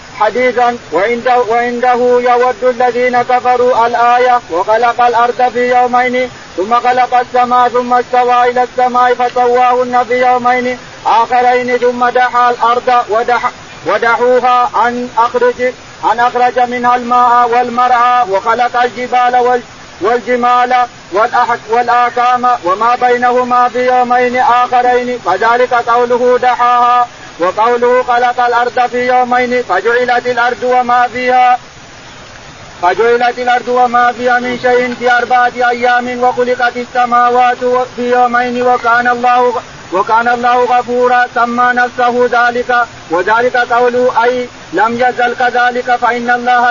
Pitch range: 245-250 Hz